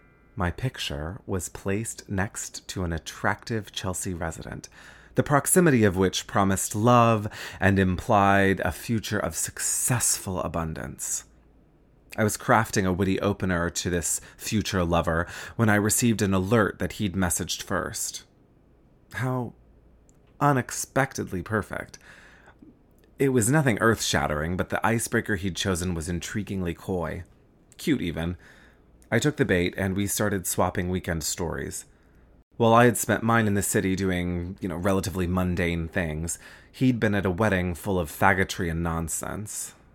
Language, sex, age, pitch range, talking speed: English, male, 30-49, 90-110 Hz, 140 wpm